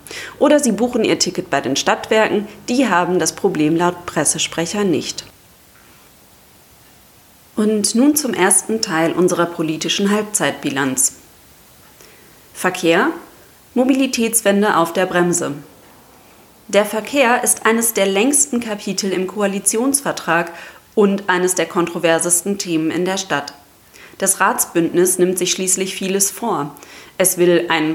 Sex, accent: female, German